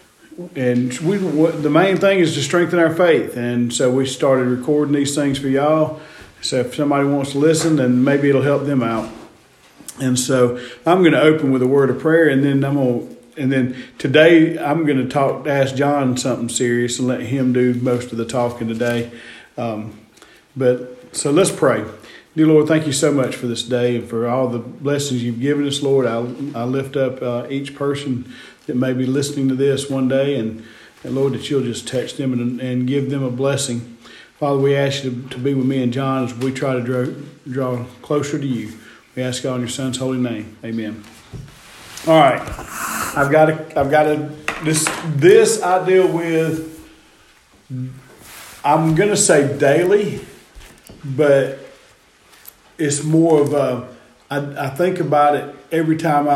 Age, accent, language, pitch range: 40-59, American, English, 125-150 Hz